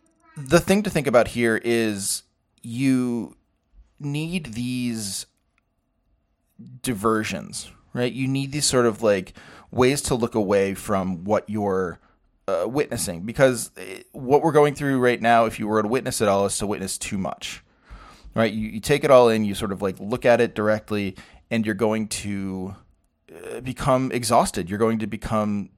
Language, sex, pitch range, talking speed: English, male, 100-125 Hz, 165 wpm